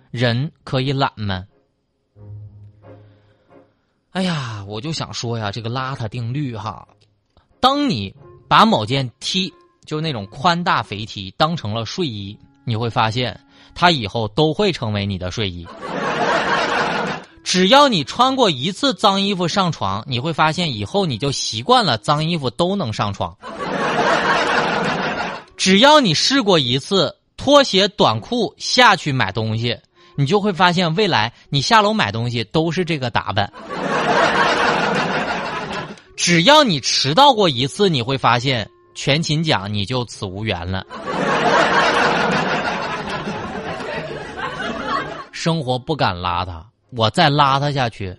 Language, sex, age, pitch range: Chinese, male, 20-39, 105-175 Hz